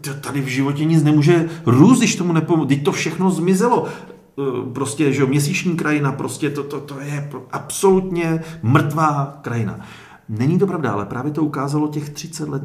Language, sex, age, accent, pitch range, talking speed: Czech, male, 40-59, native, 115-150 Hz, 165 wpm